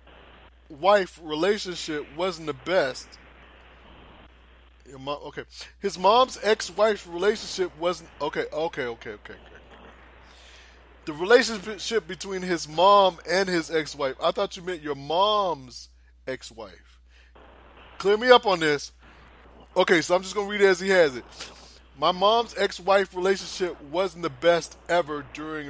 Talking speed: 135 wpm